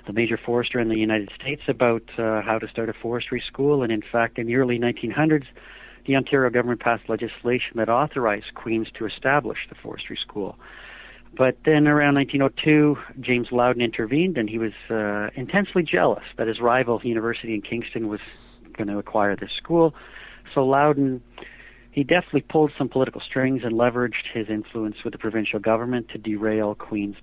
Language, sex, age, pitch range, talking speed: English, male, 50-69, 110-130 Hz, 175 wpm